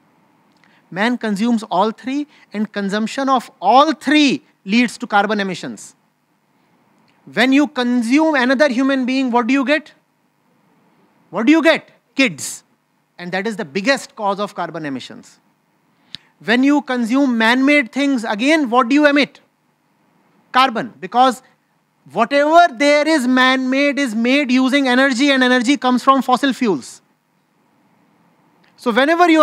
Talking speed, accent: 135 wpm, Indian